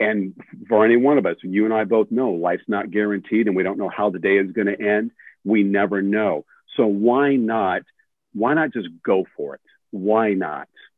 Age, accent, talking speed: 50-69, American, 215 wpm